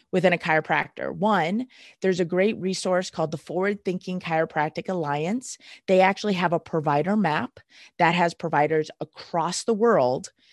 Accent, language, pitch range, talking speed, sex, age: American, English, 170-215 Hz, 150 wpm, female, 30-49